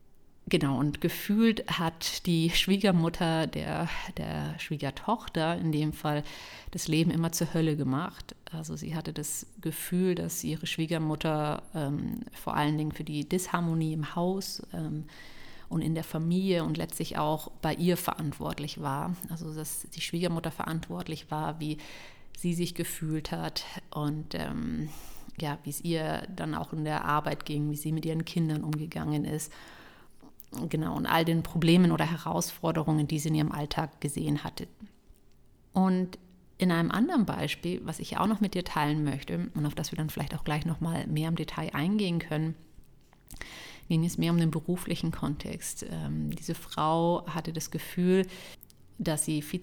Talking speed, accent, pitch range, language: 165 wpm, German, 150-175 Hz, German